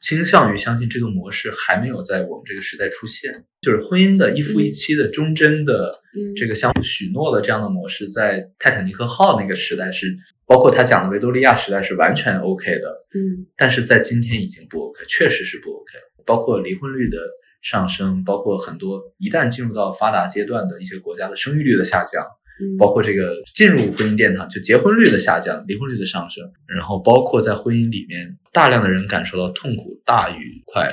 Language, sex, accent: Chinese, male, native